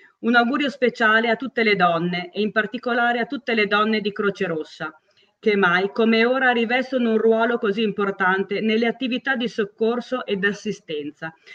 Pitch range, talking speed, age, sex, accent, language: 190-235 Hz, 165 wpm, 40-59, female, native, Italian